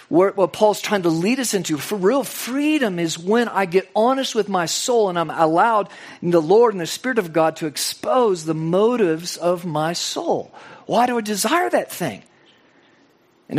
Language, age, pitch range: English, 50-69, 170-235 Hz